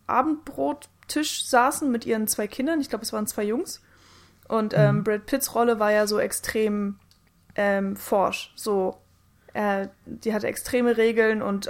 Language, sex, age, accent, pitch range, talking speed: German, female, 20-39, German, 210-240 Hz, 155 wpm